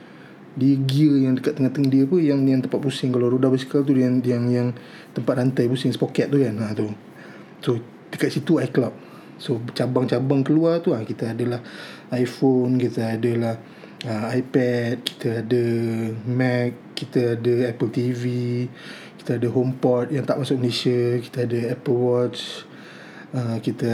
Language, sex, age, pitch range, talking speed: Malay, male, 20-39, 120-140 Hz, 165 wpm